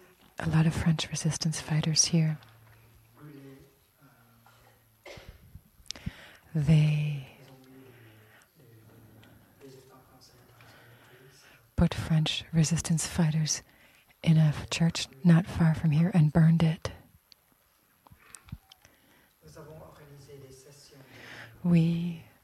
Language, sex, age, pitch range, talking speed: English, female, 30-49, 130-170 Hz, 60 wpm